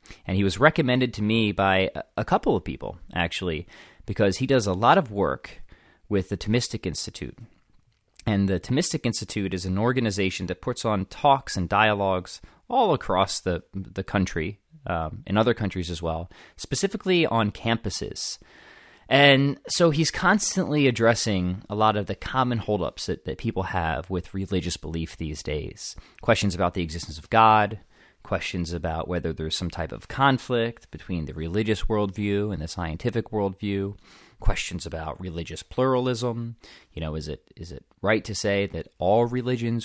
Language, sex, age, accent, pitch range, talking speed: English, male, 30-49, American, 90-120 Hz, 165 wpm